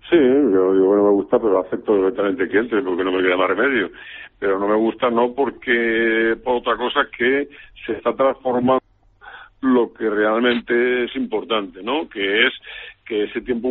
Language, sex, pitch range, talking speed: Spanish, male, 105-130 Hz, 180 wpm